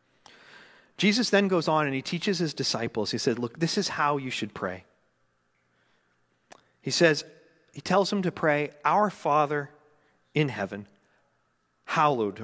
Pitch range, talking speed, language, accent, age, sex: 130-175 Hz, 145 wpm, English, American, 40-59, male